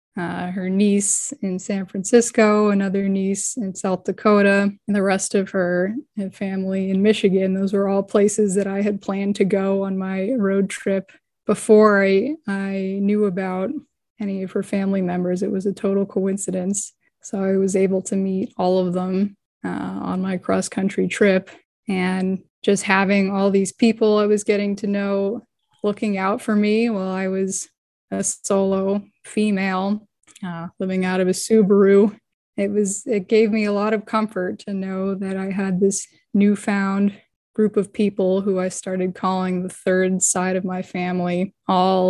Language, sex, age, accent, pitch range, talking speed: English, female, 20-39, American, 190-205 Hz, 170 wpm